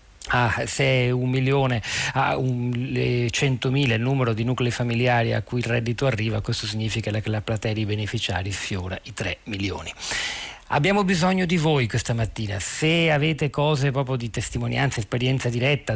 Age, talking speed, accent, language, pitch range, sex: 40-59, 160 wpm, native, Italian, 115-150 Hz, male